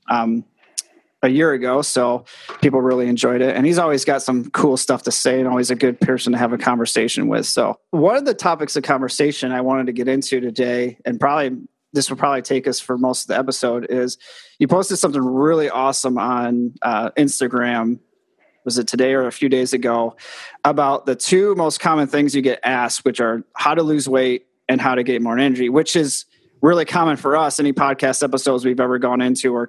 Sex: male